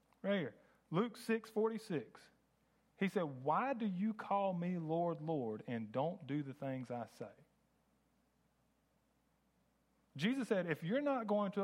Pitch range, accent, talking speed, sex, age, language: 160-225 Hz, American, 145 wpm, male, 40-59, English